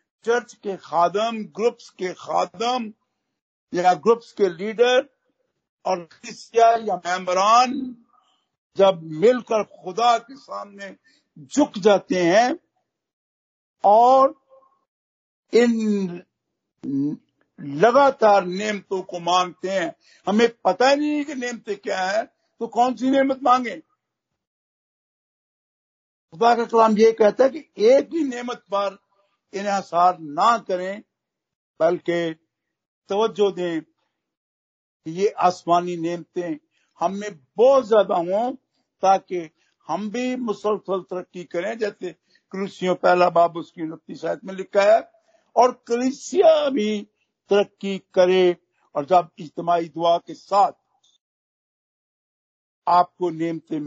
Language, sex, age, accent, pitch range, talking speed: Hindi, male, 60-79, native, 175-245 Hz, 100 wpm